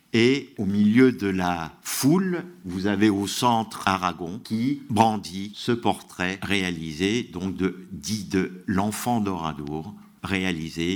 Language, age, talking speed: French, 50-69, 125 wpm